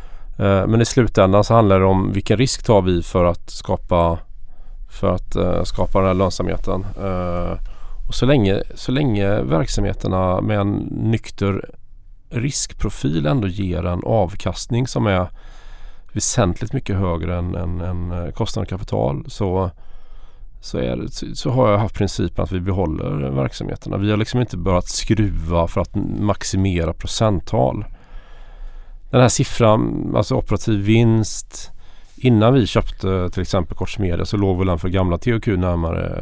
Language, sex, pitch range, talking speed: Swedish, male, 90-115 Hz, 145 wpm